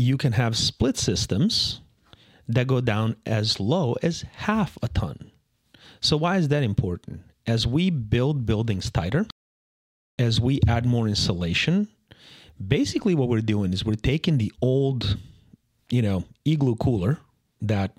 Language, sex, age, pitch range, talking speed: English, male, 30-49, 100-130 Hz, 145 wpm